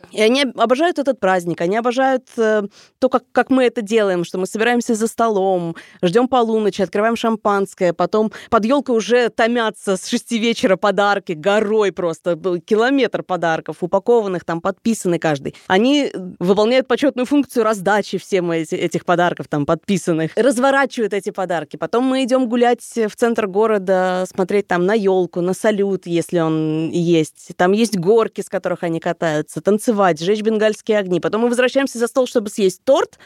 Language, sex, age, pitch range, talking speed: Russian, female, 20-39, 180-240 Hz, 160 wpm